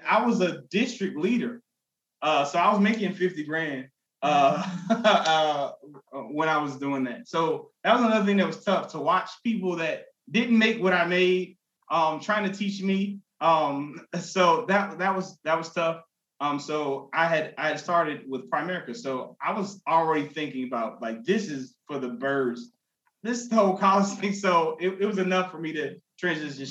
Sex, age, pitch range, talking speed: male, 20-39, 140-215 Hz, 185 wpm